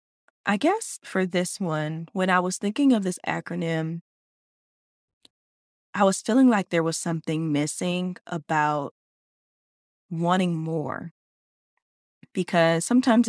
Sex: female